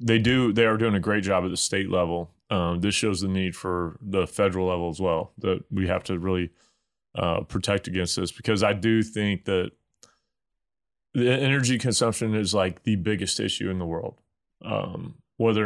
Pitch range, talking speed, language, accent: 95-115 Hz, 190 wpm, English, American